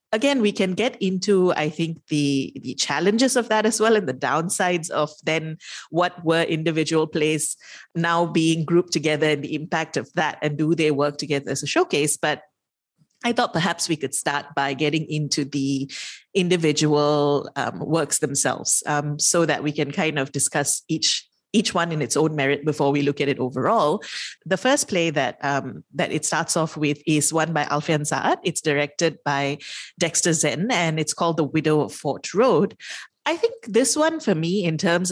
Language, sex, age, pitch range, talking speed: English, female, 30-49, 150-180 Hz, 190 wpm